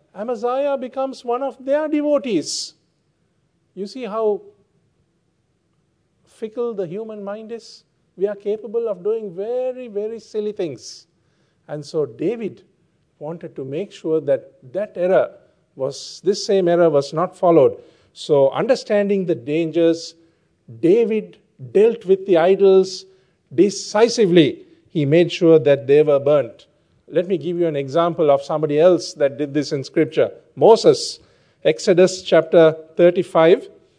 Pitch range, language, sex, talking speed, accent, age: 160-215 Hz, English, male, 130 wpm, Indian, 50-69